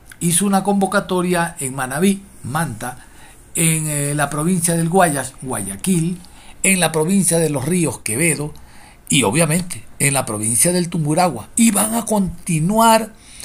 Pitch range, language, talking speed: 135-190 Hz, Spanish, 135 wpm